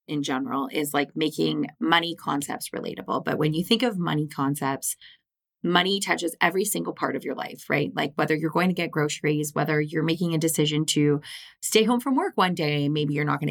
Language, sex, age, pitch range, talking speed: English, female, 20-39, 155-185 Hz, 210 wpm